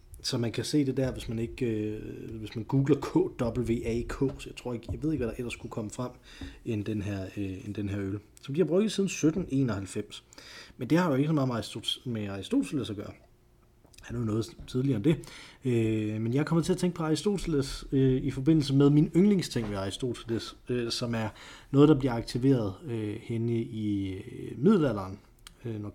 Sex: male